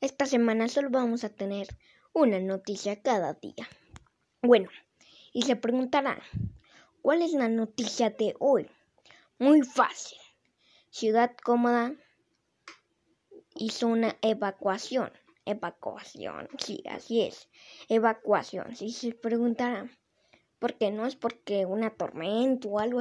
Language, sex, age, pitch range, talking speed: Spanish, male, 20-39, 215-255 Hz, 115 wpm